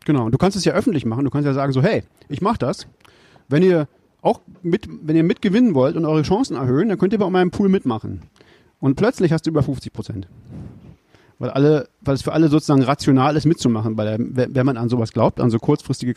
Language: German